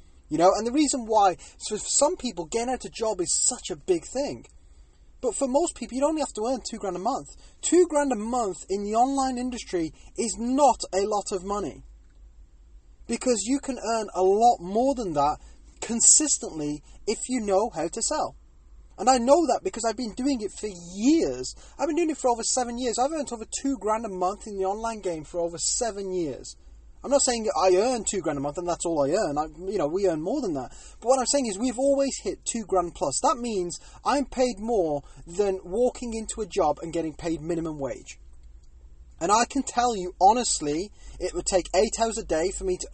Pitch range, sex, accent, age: 175-250 Hz, male, British, 20-39